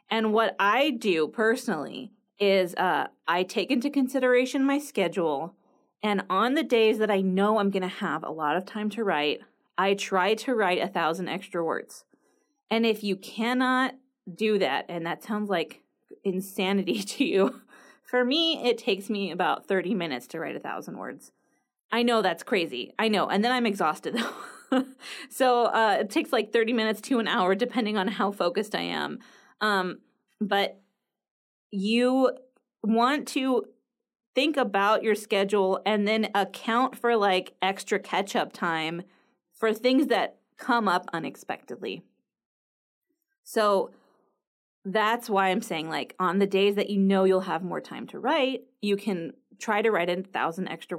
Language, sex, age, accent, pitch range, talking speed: English, female, 20-39, American, 195-245 Hz, 165 wpm